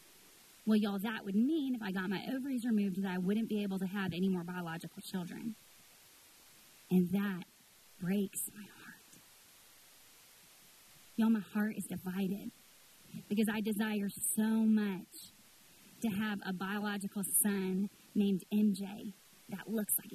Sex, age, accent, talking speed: female, 20-39, American, 140 wpm